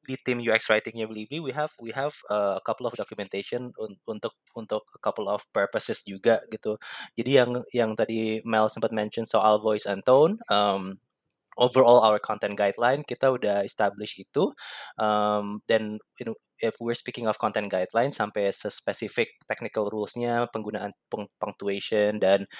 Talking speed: 160 wpm